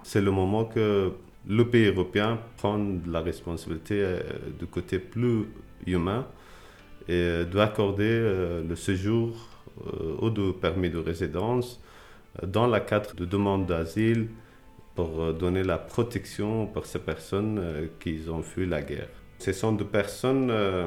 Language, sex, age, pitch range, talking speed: English, male, 40-59, 90-110 Hz, 130 wpm